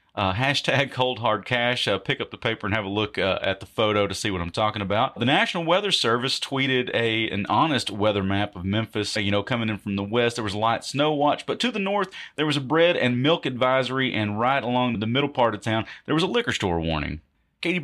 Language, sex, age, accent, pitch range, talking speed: English, male, 30-49, American, 105-135 Hz, 250 wpm